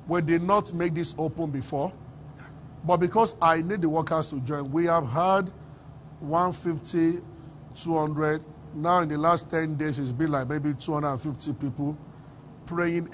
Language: English